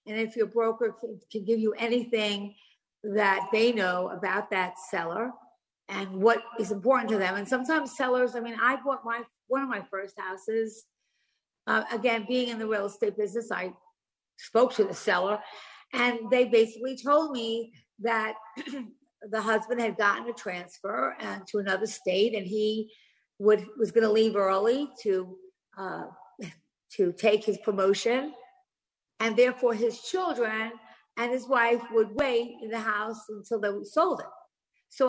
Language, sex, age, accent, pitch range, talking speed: English, female, 50-69, American, 210-250 Hz, 160 wpm